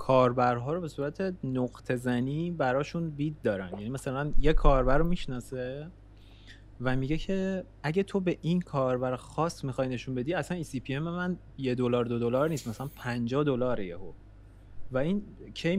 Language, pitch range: Persian, 120-160 Hz